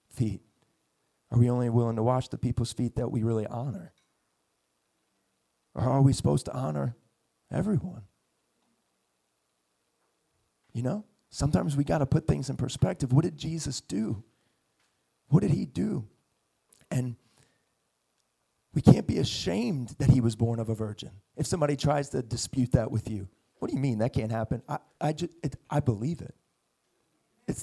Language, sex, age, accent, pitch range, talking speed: English, male, 30-49, American, 120-150 Hz, 160 wpm